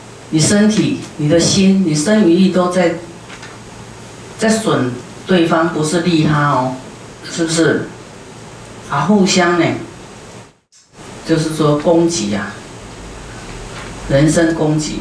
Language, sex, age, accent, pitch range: Chinese, female, 40-59, native, 150-180 Hz